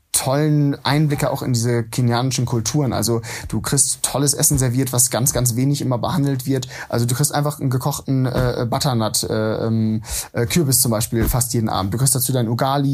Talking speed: 190 wpm